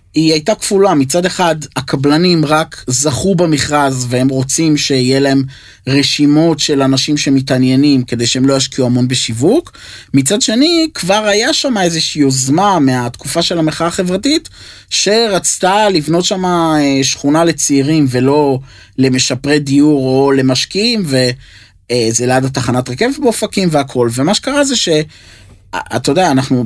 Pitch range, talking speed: 125-160 Hz, 130 wpm